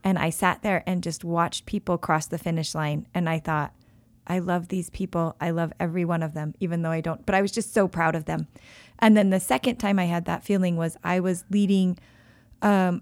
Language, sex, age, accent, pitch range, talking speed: English, female, 30-49, American, 165-195 Hz, 235 wpm